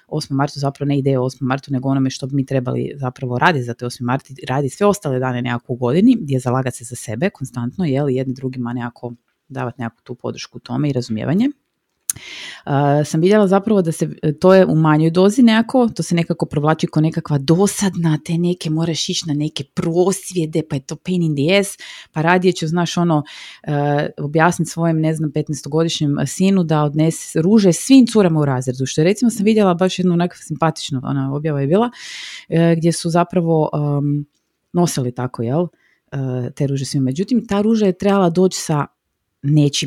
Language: Croatian